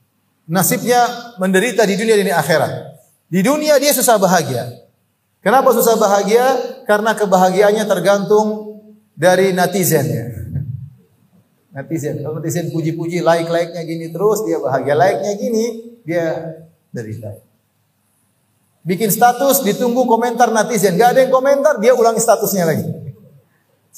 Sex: male